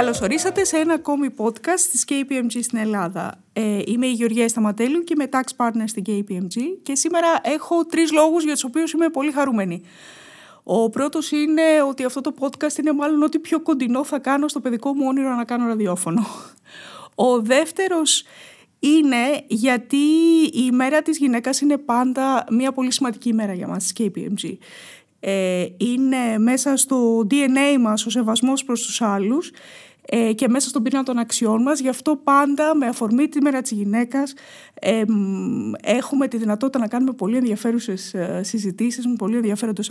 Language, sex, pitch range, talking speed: Greek, female, 230-290 Hz, 165 wpm